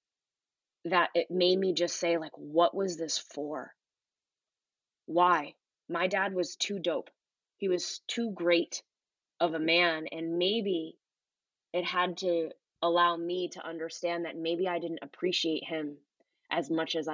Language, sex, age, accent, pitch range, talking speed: English, female, 20-39, American, 155-180 Hz, 145 wpm